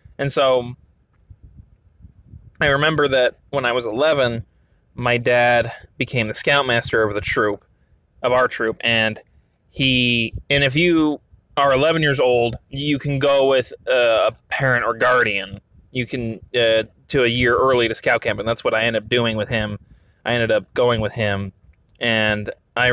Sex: male